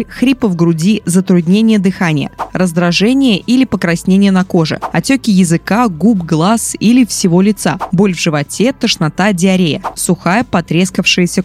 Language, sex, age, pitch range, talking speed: Russian, female, 20-39, 170-225 Hz, 125 wpm